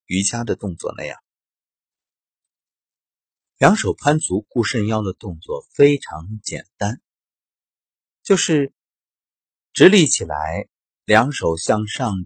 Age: 50-69